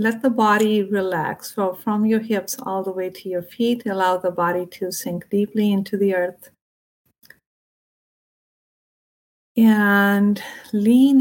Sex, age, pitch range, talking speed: female, 50-69, 185-220 Hz, 135 wpm